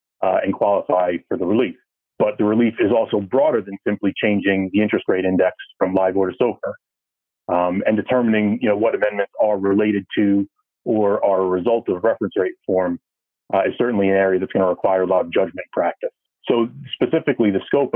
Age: 30-49